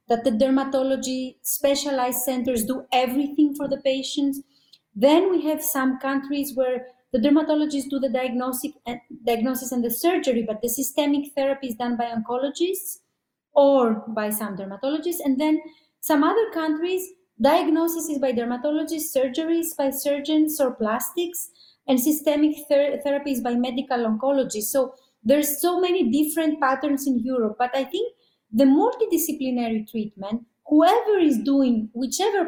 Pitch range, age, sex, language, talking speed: 255-310 Hz, 30-49, female, English, 140 wpm